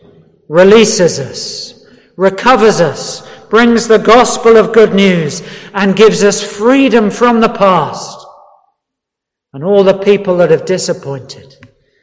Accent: British